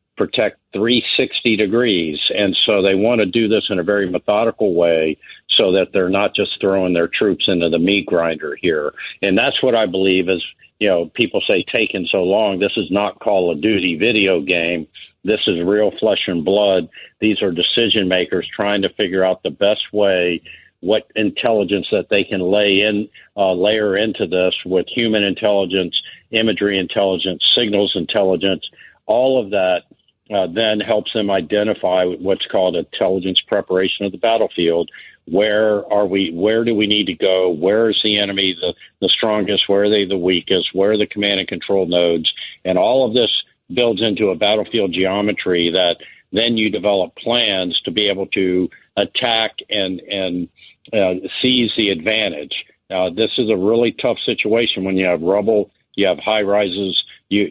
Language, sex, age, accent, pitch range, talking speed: English, male, 50-69, American, 90-105 Hz, 175 wpm